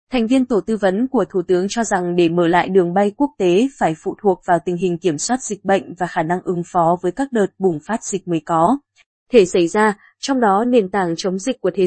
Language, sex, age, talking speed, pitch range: Vietnamese, female, 20-39, 260 wpm, 185-225 Hz